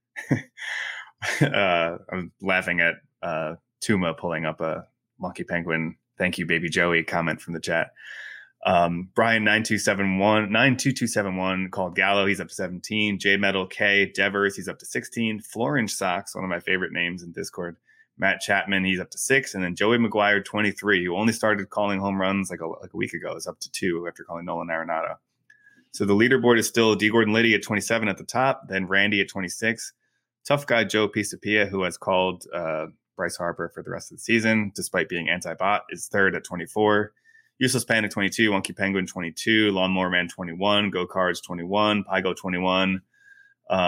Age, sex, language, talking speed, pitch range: 20-39, male, English, 180 wpm, 90-110 Hz